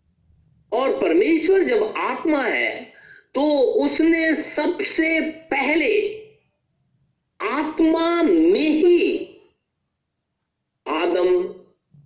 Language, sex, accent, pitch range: Hindi, male, native, 330-420 Hz